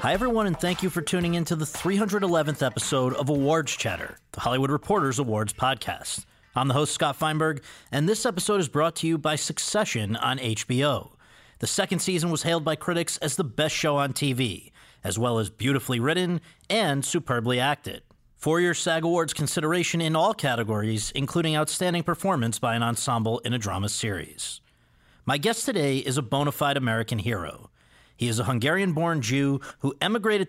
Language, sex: English, male